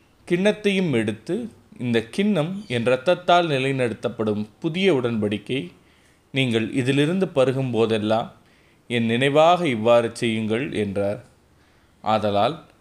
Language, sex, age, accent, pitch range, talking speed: Tamil, male, 30-49, native, 110-145 Hz, 90 wpm